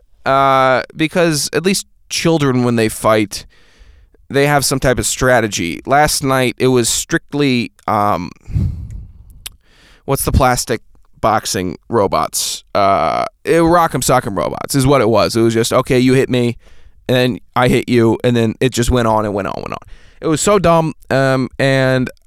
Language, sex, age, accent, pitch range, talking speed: English, male, 20-39, American, 115-150 Hz, 180 wpm